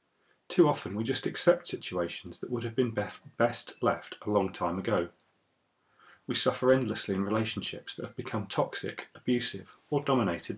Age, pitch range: 40-59, 100-120 Hz